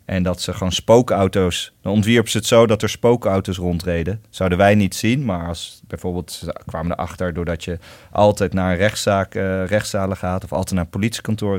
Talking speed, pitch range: 195 wpm, 90-105 Hz